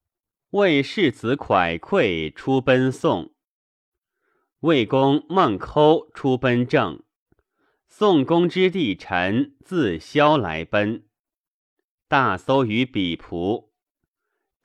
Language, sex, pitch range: Chinese, male, 100-150 Hz